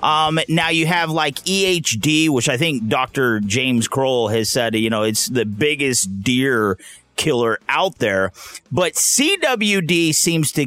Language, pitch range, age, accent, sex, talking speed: English, 115-160 Hz, 30-49, American, male, 150 wpm